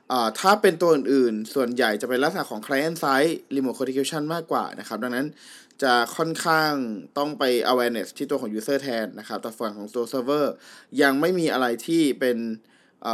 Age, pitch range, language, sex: 20-39, 120-155 Hz, Thai, male